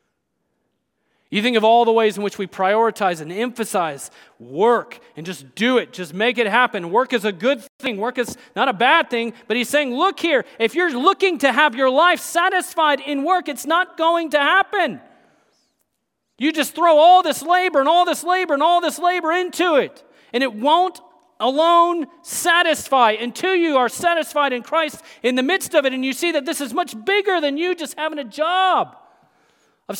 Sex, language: male, English